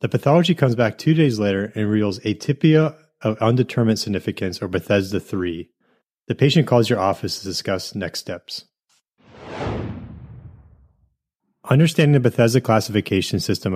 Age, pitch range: 30-49, 100-125 Hz